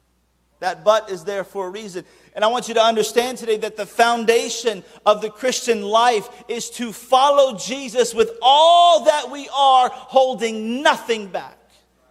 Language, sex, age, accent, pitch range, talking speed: English, male, 40-59, American, 220-320 Hz, 165 wpm